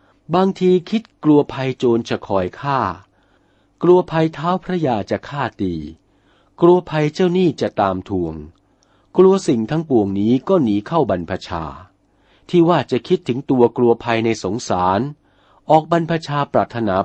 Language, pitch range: Thai, 95-145 Hz